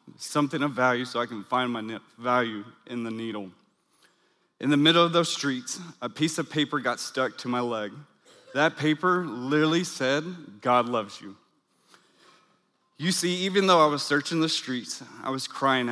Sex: male